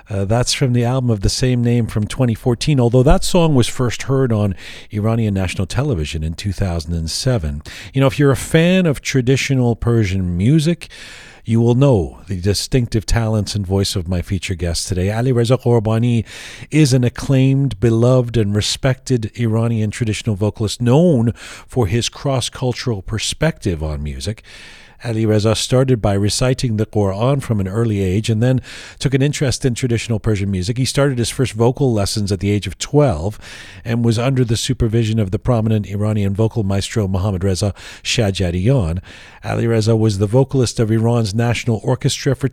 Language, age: English, 40-59